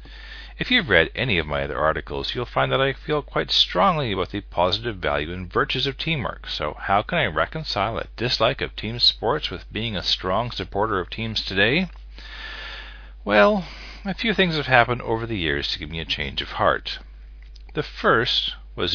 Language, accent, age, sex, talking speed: English, American, 40-59, male, 190 wpm